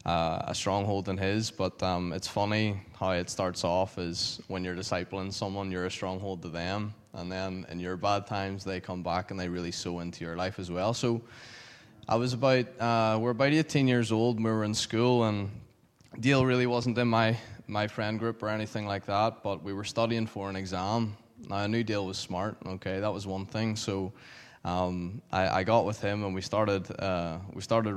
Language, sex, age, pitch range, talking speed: English, male, 10-29, 95-115 Hz, 210 wpm